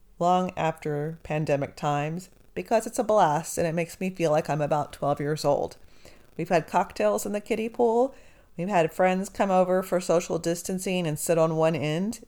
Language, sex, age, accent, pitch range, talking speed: English, female, 40-59, American, 150-195 Hz, 190 wpm